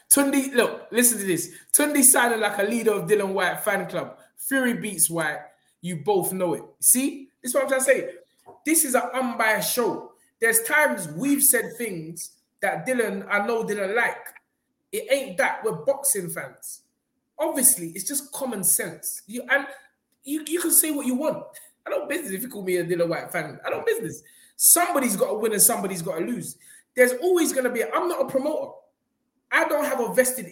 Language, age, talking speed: English, 20-39, 200 wpm